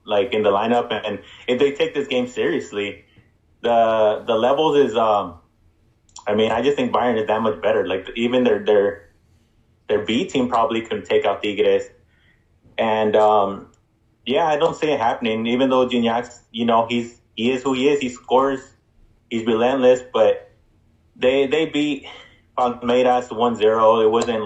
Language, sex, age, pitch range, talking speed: English, male, 20-39, 110-135 Hz, 170 wpm